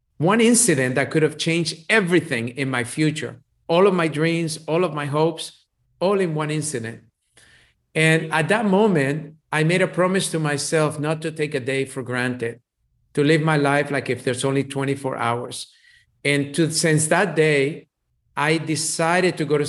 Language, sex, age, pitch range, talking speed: English, male, 50-69, 140-170 Hz, 175 wpm